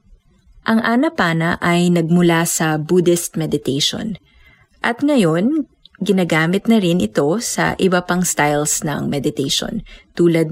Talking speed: 115 wpm